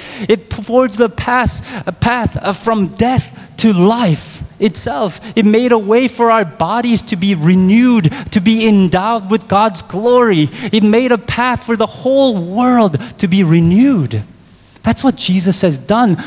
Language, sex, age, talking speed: English, male, 20-39, 150 wpm